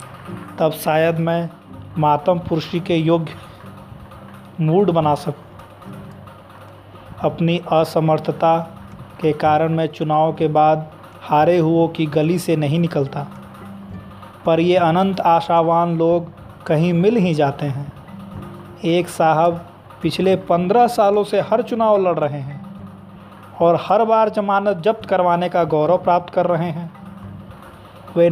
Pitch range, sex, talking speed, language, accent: 150-185 Hz, male, 125 wpm, Hindi, native